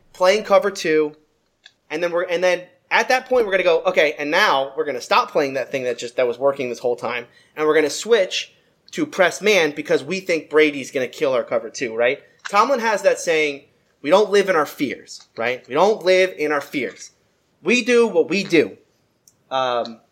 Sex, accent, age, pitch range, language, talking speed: male, American, 20-39, 150-235 Hz, English, 210 wpm